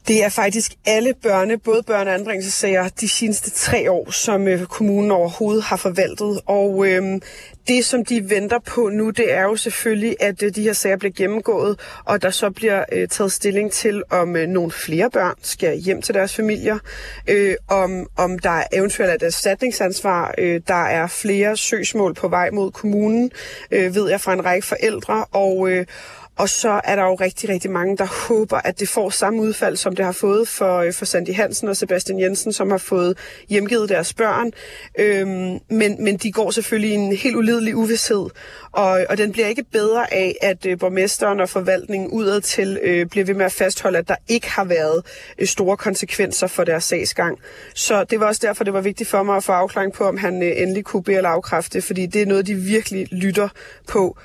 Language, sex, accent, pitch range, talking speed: Danish, female, native, 185-215 Hz, 205 wpm